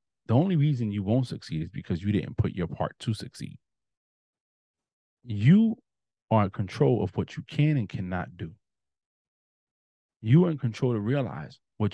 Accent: American